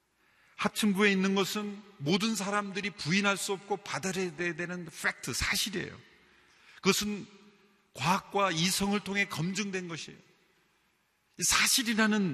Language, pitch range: Korean, 155-215 Hz